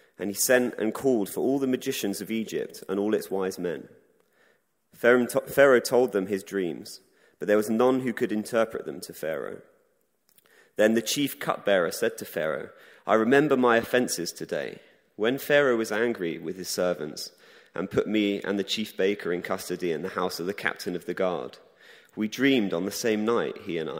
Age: 30-49